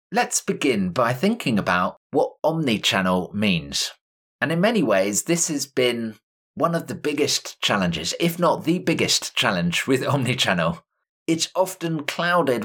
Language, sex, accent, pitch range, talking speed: English, male, British, 130-170 Hz, 140 wpm